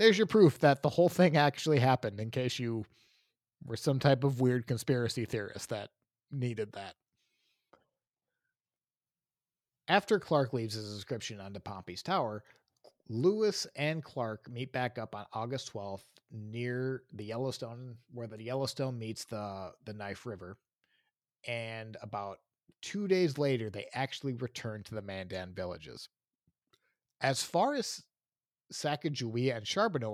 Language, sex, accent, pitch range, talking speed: English, male, American, 110-150 Hz, 135 wpm